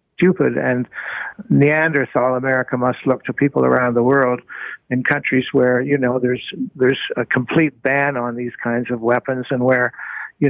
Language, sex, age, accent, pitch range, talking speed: English, male, 60-79, American, 120-140 Hz, 165 wpm